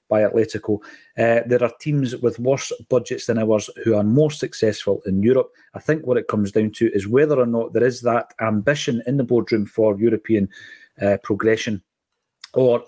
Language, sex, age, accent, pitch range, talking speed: English, male, 40-59, British, 115-140 Hz, 185 wpm